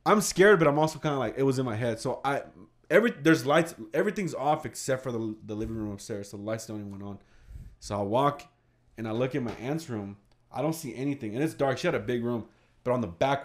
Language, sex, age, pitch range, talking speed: English, male, 20-39, 105-135 Hz, 270 wpm